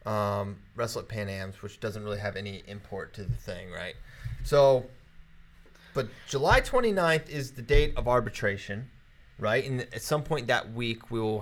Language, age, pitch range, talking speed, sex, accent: English, 30-49, 105-145 Hz, 175 wpm, male, American